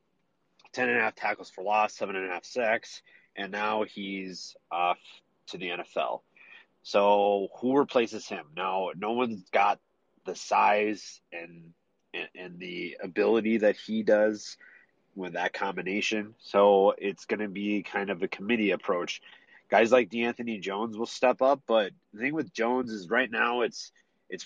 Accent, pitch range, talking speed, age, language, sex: American, 100-120 Hz, 165 wpm, 30-49, English, male